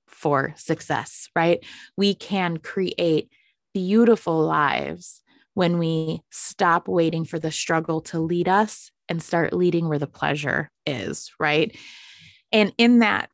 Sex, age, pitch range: female, 20-39, 165-205 Hz